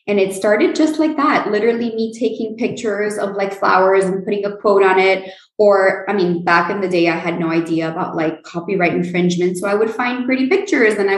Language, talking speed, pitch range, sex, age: English, 225 wpm, 170-200 Hz, female, 20-39